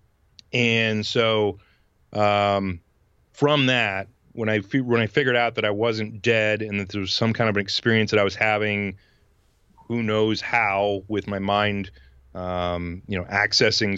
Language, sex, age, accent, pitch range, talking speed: English, male, 30-49, American, 95-110 Hz, 165 wpm